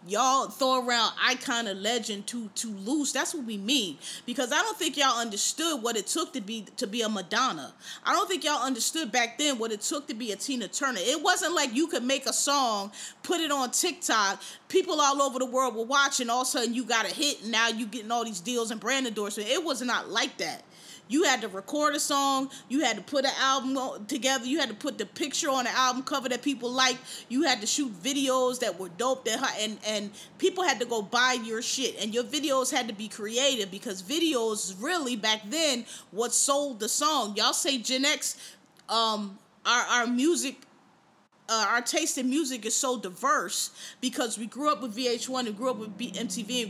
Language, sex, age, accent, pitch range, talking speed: English, female, 20-39, American, 225-275 Hz, 225 wpm